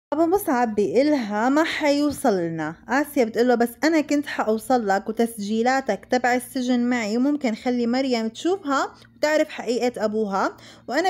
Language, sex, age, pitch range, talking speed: Arabic, female, 20-39, 225-285 Hz, 125 wpm